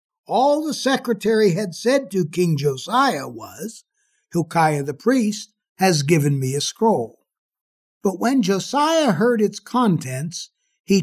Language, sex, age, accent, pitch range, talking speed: English, male, 60-79, American, 165-230 Hz, 130 wpm